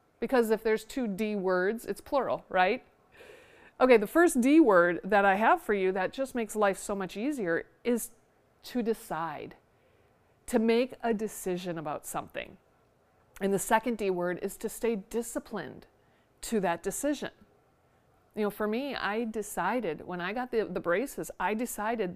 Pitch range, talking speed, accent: 190-245 Hz, 165 wpm, American